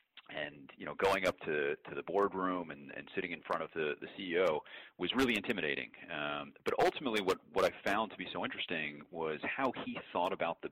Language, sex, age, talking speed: English, male, 30-49, 215 wpm